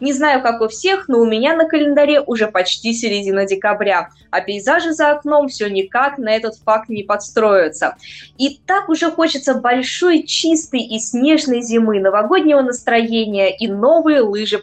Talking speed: 160 wpm